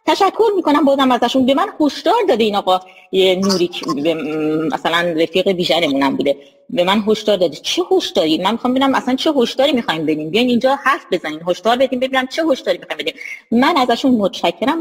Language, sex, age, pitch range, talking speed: Persian, female, 30-49, 245-380 Hz, 180 wpm